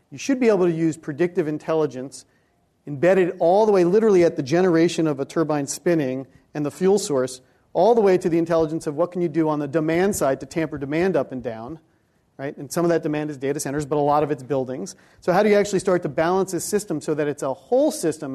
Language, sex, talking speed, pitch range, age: English, male, 250 wpm, 140-170 Hz, 40-59